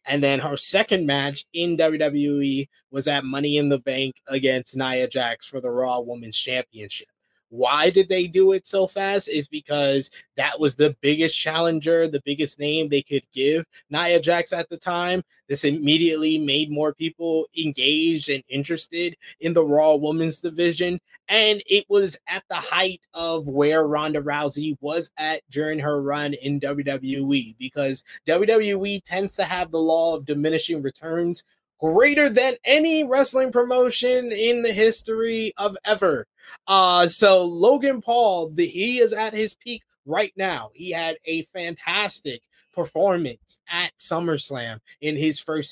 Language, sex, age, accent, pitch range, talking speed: English, male, 20-39, American, 145-195 Hz, 155 wpm